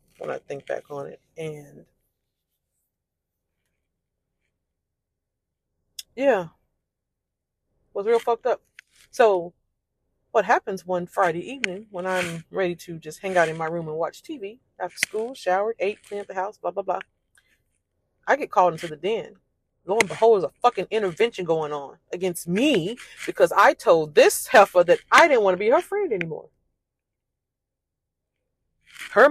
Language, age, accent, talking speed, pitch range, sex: English, 30-49, American, 150 wpm, 175-275 Hz, female